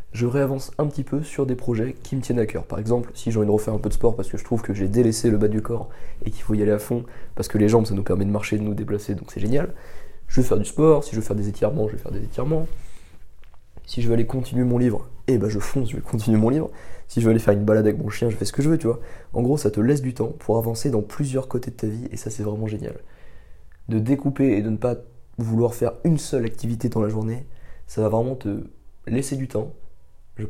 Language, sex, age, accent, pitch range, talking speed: French, male, 20-39, French, 105-130 Hz, 295 wpm